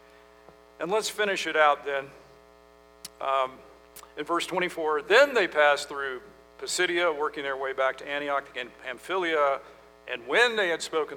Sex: male